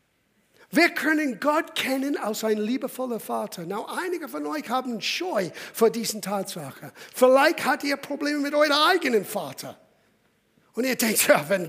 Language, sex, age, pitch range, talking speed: German, male, 50-69, 210-270 Hz, 155 wpm